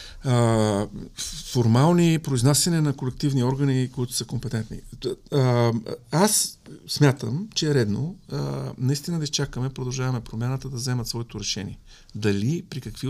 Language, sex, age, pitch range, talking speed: English, male, 50-69, 110-140 Hz, 115 wpm